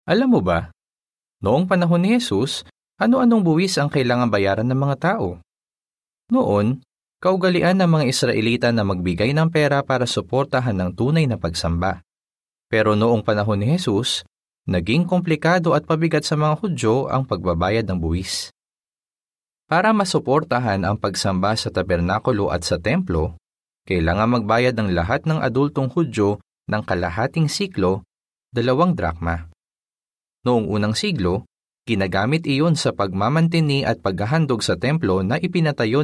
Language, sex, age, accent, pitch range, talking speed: Filipino, male, 20-39, native, 100-150 Hz, 135 wpm